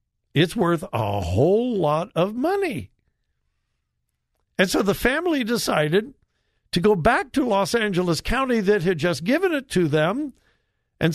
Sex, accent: male, American